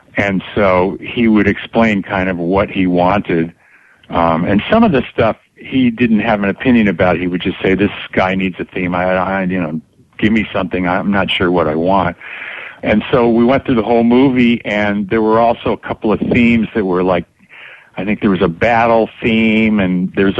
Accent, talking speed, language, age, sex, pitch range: American, 210 wpm, English, 50-69, male, 95-115 Hz